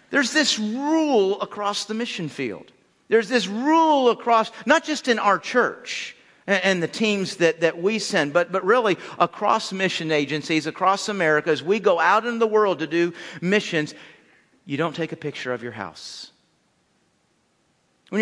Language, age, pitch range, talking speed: English, 50-69, 155-225 Hz, 165 wpm